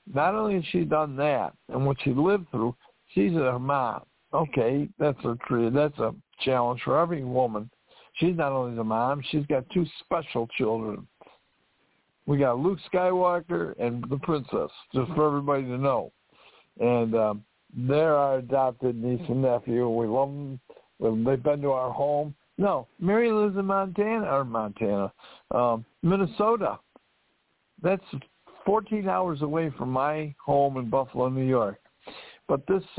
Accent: American